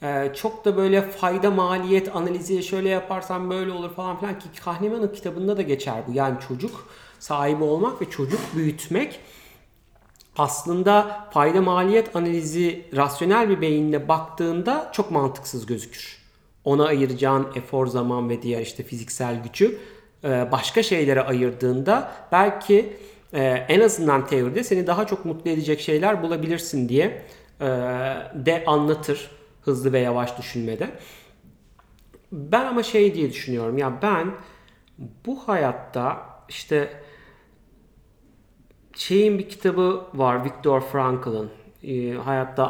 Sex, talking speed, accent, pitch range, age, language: male, 115 wpm, native, 130-190 Hz, 40-59, Turkish